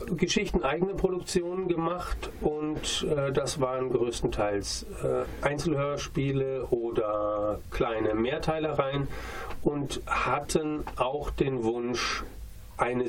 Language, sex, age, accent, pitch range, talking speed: German, male, 40-59, German, 115-155 Hz, 85 wpm